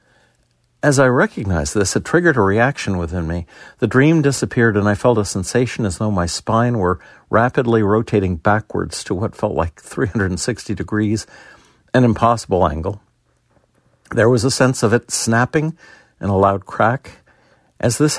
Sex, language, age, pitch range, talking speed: male, English, 60-79, 95-120 Hz, 160 wpm